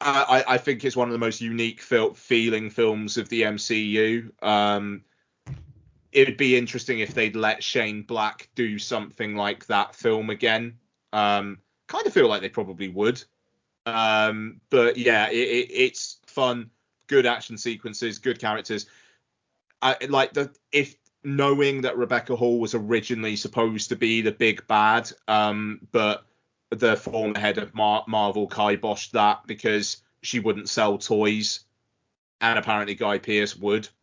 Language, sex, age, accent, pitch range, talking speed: English, male, 20-39, British, 105-115 Hz, 150 wpm